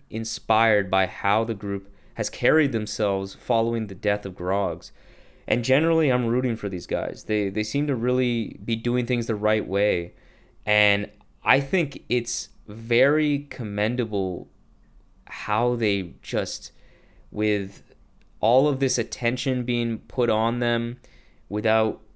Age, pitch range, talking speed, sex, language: 20-39, 105-130 Hz, 135 wpm, male, English